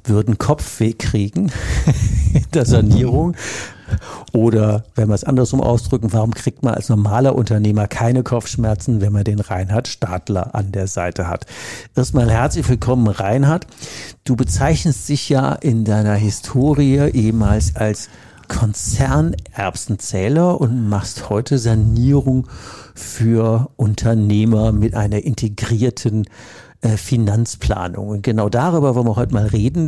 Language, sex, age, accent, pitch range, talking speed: German, male, 60-79, German, 105-125 Hz, 125 wpm